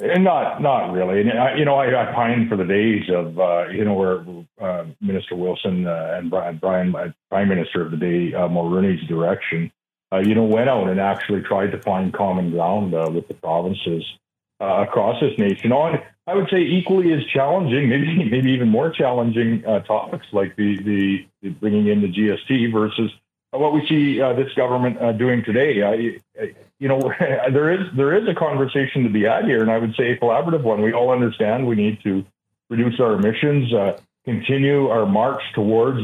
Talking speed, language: 200 wpm, English